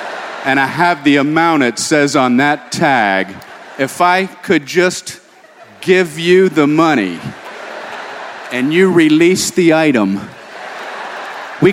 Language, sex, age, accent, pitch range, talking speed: English, male, 50-69, American, 145-190 Hz, 125 wpm